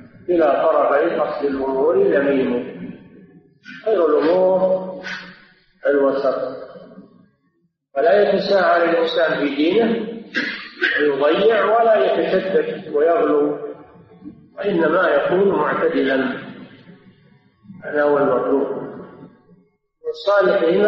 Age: 50-69